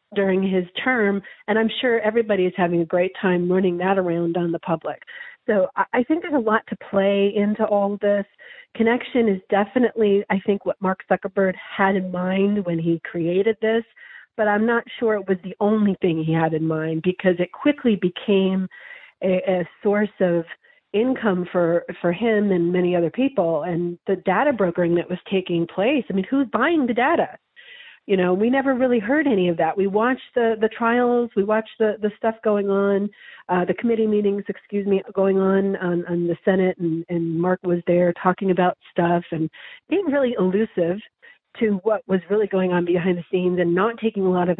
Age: 40-59